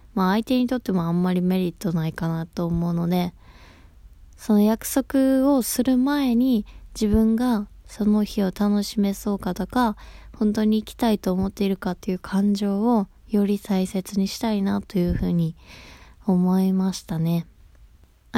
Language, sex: Japanese, female